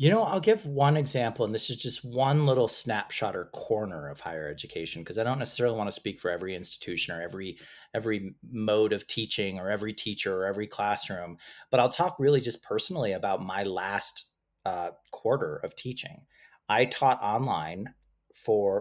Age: 30-49